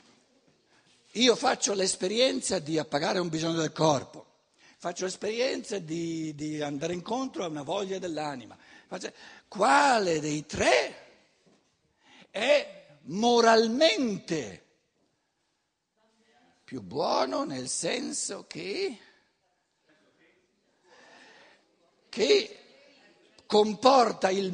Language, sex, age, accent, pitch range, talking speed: Italian, male, 60-79, native, 165-240 Hz, 80 wpm